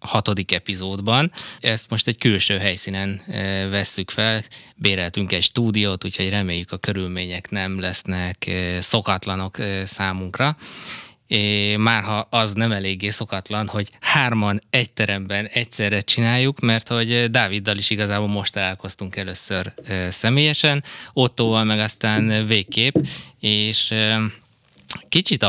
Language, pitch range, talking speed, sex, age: Hungarian, 95-115 Hz, 110 wpm, male, 20-39